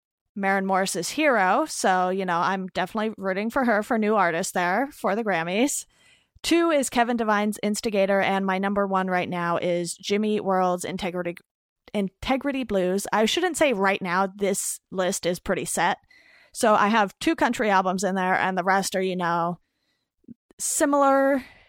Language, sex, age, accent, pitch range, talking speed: English, female, 20-39, American, 180-215 Hz, 165 wpm